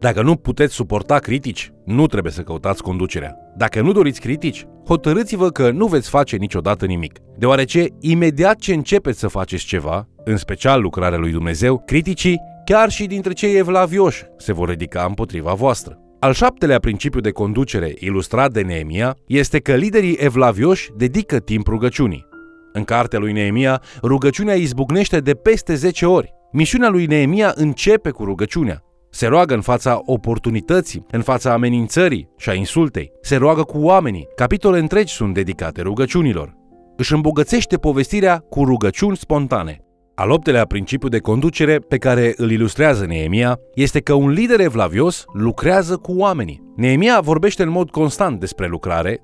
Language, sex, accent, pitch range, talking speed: Romanian, male, native, 105-165 Hz, 150 wpm